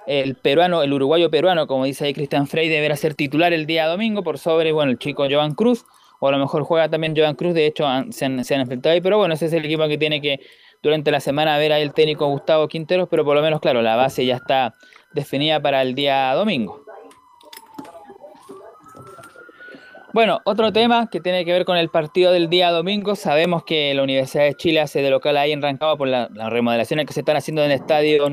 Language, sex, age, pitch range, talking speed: Spanish, male, 20-39, 150-195 Hz, 225 wpm